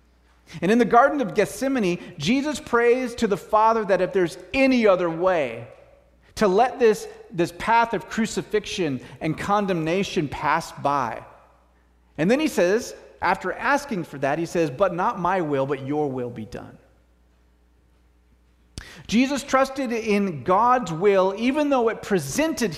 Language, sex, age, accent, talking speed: English, male, 30-49, American, 150 wpm